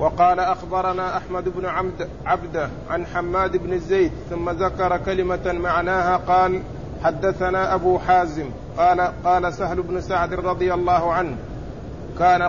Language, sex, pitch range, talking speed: Arabic, male, 180-190 Hz, 130 wpm